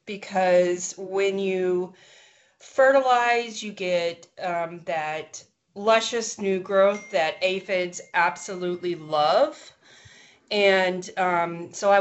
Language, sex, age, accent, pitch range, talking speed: English, female, 30-49, American, 170-200 Hz, 95 wpm